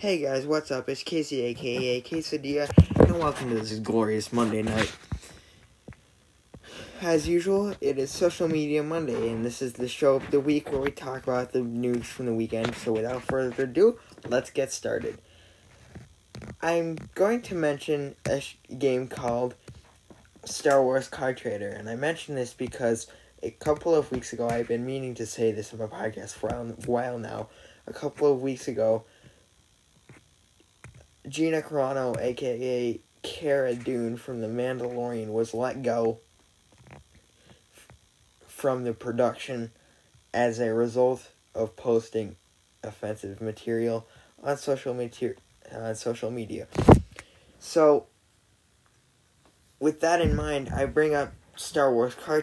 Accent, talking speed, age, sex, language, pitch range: American, 140 wpm, 10-29, male, English, 115-145 Hz